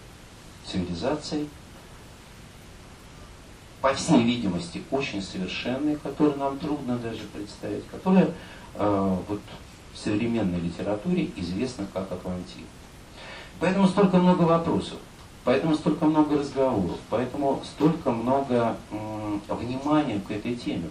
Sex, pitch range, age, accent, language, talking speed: male, 95-140 Hz, 40-59, native, Russian, 100 wpm